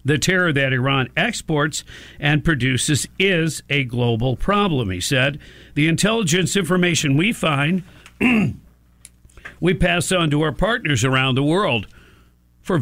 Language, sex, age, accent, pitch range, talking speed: English, male, 50-69, American, 120-170 Hz, 130 wpm